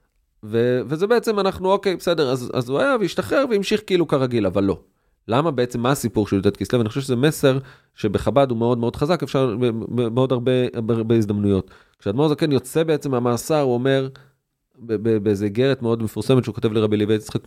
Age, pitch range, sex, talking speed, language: 30-49, 120-155 Hz, male, 190 wpm, Hebrew